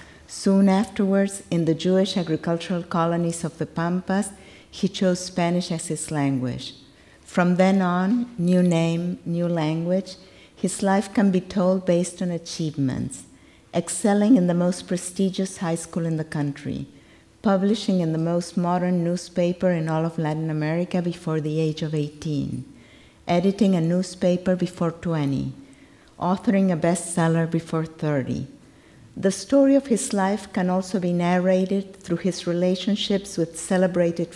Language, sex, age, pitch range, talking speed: English, female, 50-69, 155-185 Hz, 140 wpm